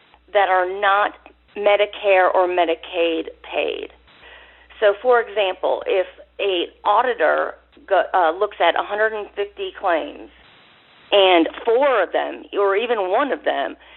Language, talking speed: English, 115 wpm